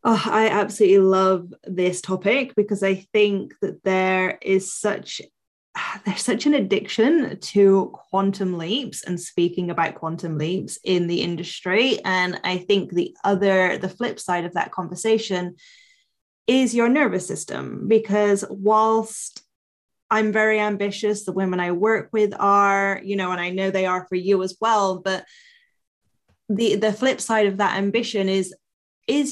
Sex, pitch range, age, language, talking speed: female, 185-220 Hz, 10-29, English, 150 wpm